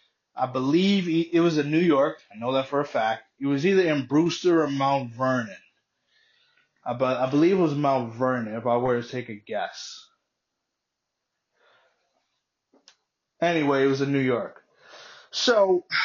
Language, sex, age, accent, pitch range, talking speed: English, male, 20-39, American, 135-170 Hz, 155 wpm